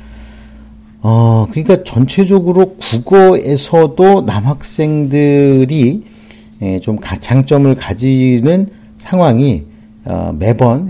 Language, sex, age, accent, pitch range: English, male, 50-69, Korean, 110-145 Hz